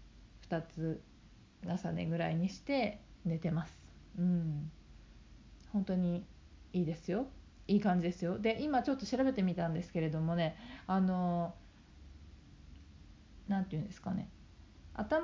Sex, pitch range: female, 170-230 Hz